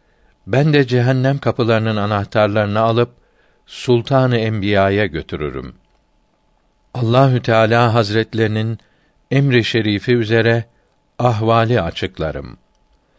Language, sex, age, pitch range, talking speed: Turkish, male, 60-79, 100-120 Hz, 75 wpm